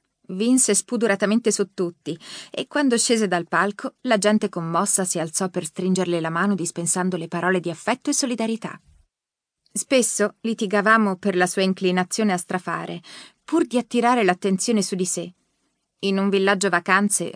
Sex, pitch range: female, 180-225 Hz